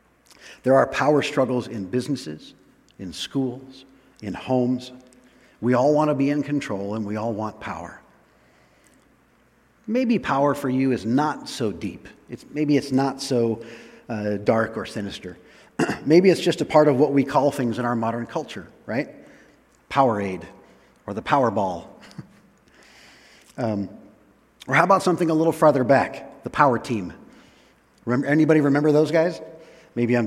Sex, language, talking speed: male, English, 155 wpm